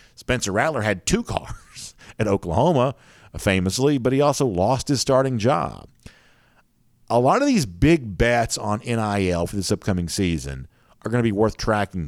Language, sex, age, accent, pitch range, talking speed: English, male, 50-69, American, 90-115 Hz, 165 wpm